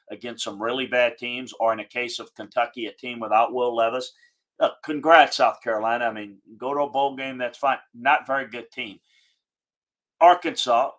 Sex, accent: male, American